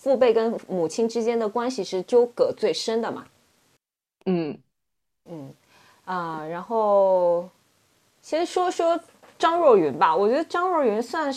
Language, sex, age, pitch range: Chinese, female, 20-39, 185-270 Hz